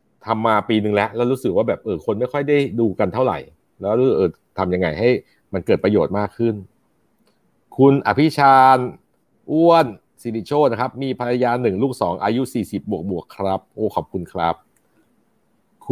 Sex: male